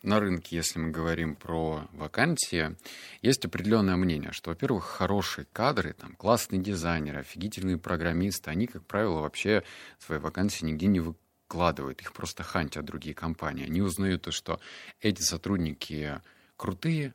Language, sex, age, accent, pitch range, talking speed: Russian, male, 30-49, native, 80-105 Hz, 135 wpm